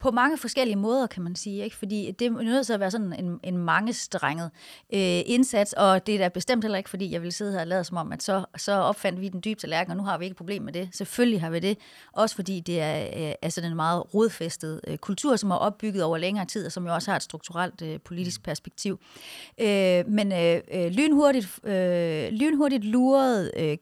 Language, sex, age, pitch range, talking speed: Danish, female, 30-49, 175-230 Hz, 230 wpm